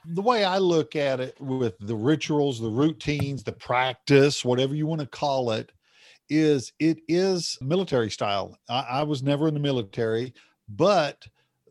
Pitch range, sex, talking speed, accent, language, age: 130-165 Hz, male, 160 wpm, American, English, 50-69